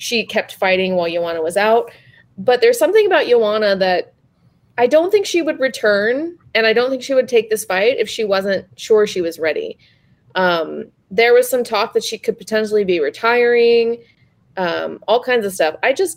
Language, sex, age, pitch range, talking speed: English, female, 20-39, 185-240 Hz, 195 wpm